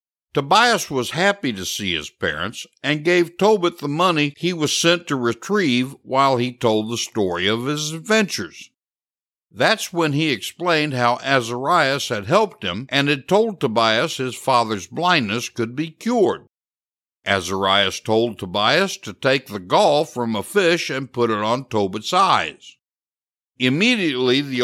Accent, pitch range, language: American, 115-170 Hz, English